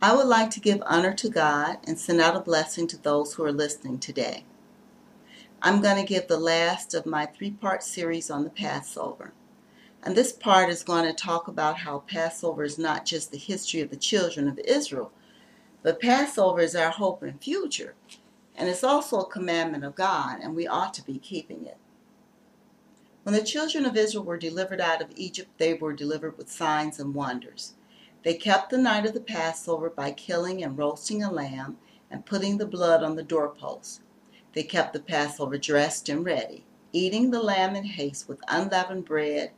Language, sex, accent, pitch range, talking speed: English, female, American, 160-220 Hz, 190 wpm